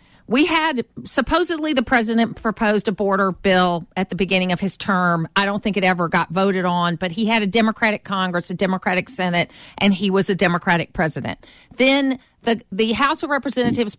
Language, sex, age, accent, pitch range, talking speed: English, female, 50-69, American, 190-255 Hz, 190 wpm